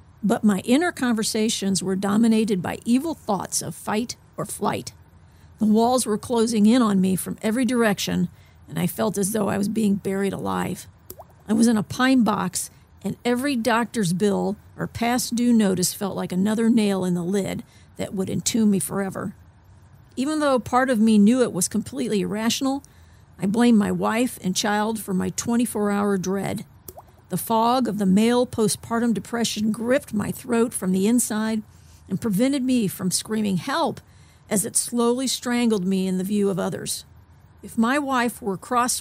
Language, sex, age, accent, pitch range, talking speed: English, female, 50-69, American, 195-230 Hz, 175 wpm